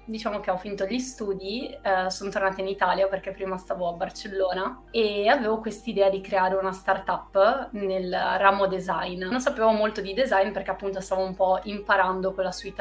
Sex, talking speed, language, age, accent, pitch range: female, 185 wpm, Italian, 20-39, native, 190-215 Hz